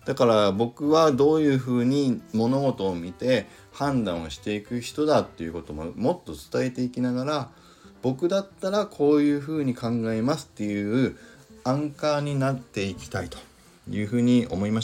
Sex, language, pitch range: male, Japanese, 90-125 Hz